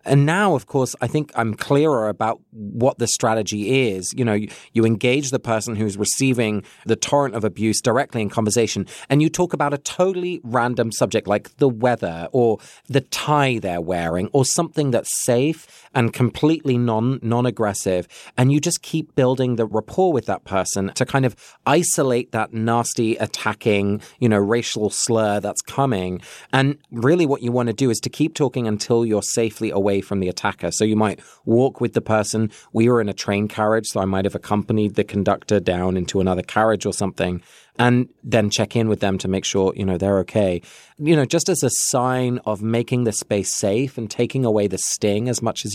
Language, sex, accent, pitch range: English, male, British, 105-130 Hz